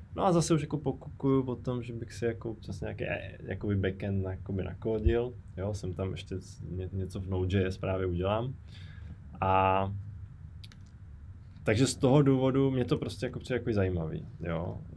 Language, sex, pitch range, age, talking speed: Czech, male, 90-105 Hz, 20-39, 145 wpm